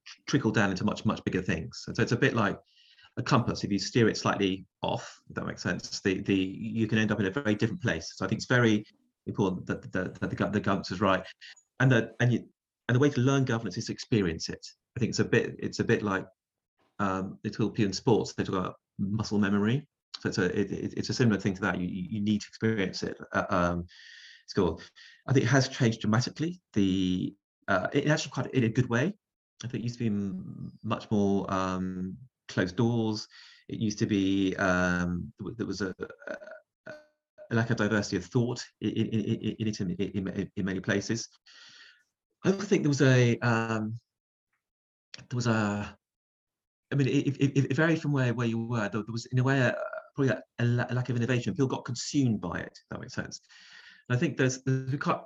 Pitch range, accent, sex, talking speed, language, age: 105-135 Hz, British, male, 210 wpm, English, 30-49